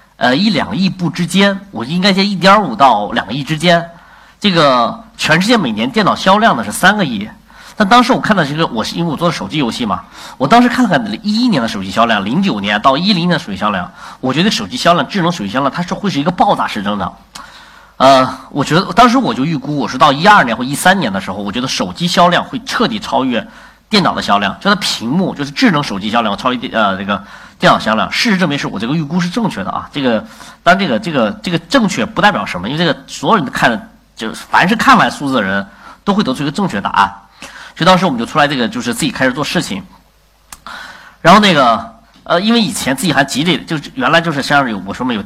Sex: male